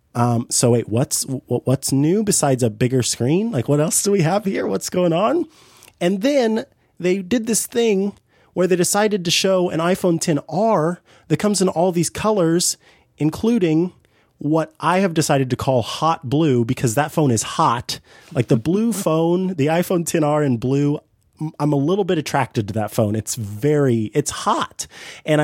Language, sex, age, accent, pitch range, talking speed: English, male, 30-49, American, 115-165 Hz, 175 wpm